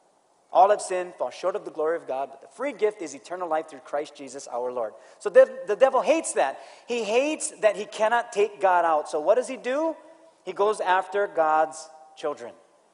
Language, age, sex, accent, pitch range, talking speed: English, 30-49, male, American, 180-245 Hz, 215 wpm